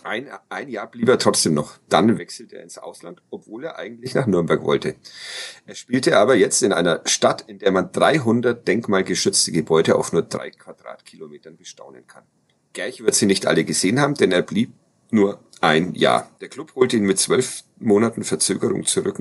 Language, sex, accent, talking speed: German, male, German, 185 wpm